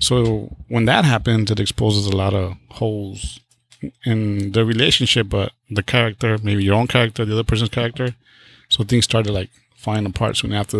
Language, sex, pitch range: English, male, 100-120 Hz